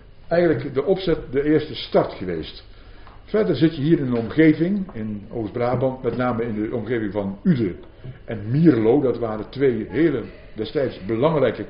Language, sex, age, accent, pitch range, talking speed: Dutch, male, 60-79, Dutch, 105-135 Hz, 160 wpm